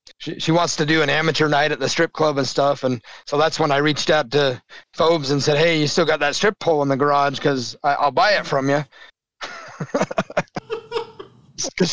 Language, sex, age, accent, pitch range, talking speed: English, male, 30-49, American, 140-170 Hz, 215 wpm